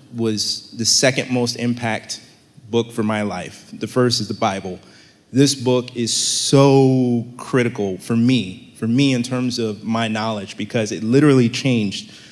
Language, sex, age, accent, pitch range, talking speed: English, male, 30-49, American, 110-130 Hz, 155 wpm